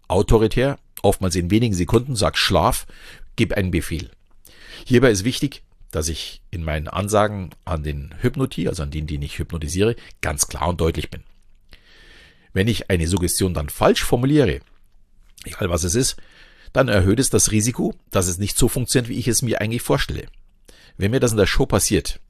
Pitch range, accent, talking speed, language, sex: 90-110 Hz, German, 180 wpm, German, male